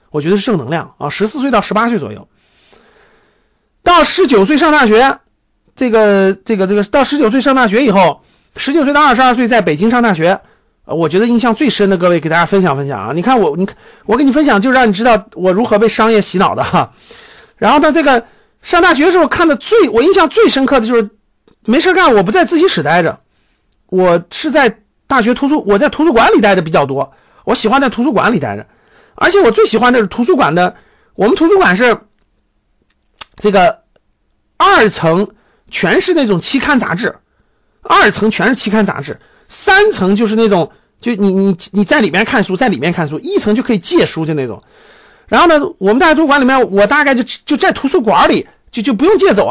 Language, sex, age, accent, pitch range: Chinese, male, 50-69, native, 195-280 Hz